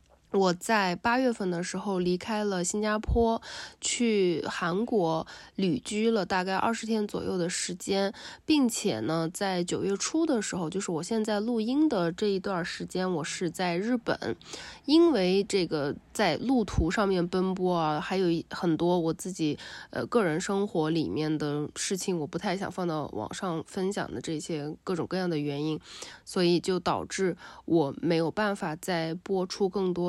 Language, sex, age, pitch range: Chinese, female, 20-39, 170-210 Hz